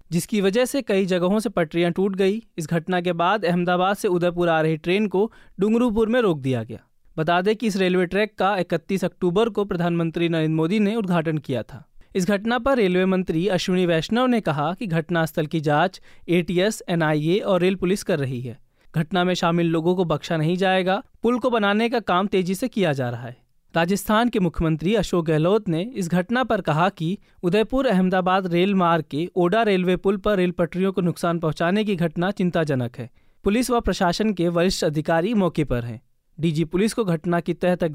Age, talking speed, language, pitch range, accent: 20-39, 200 wpm, Hindi, 170-205 Hz, native